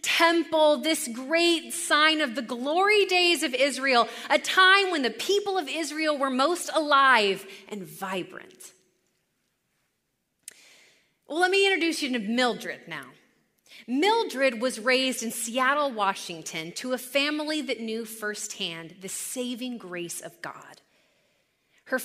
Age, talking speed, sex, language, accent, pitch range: 30-49, 130 wpm, female, English, American, 230-320 Hz